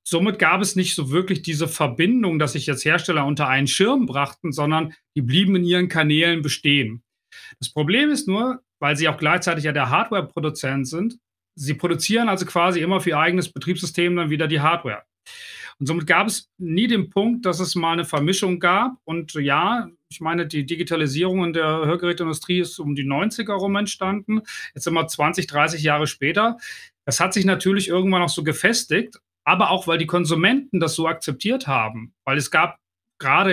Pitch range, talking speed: 145-190 Hz, 185 wpm